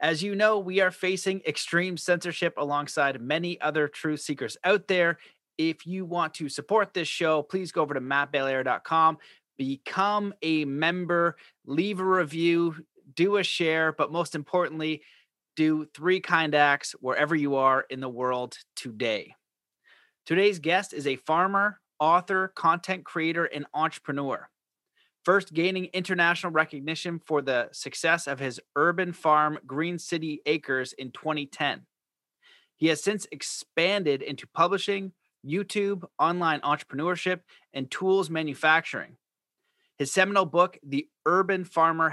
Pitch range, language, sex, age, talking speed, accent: 145-185 Hz, English, male, 30-49, 135 wpm, American